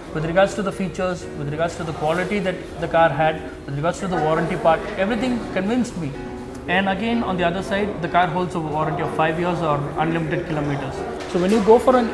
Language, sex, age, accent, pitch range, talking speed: English, male, 20-39, Indian, 165-210 Hz, 225 wpm